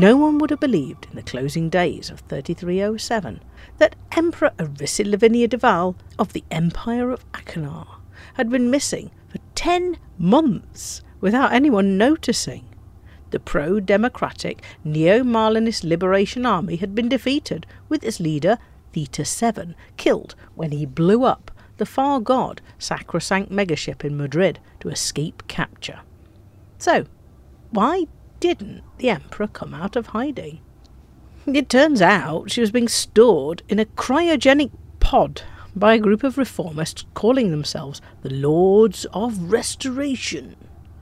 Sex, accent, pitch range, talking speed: female, British, 160-250 Hz, 130 wpm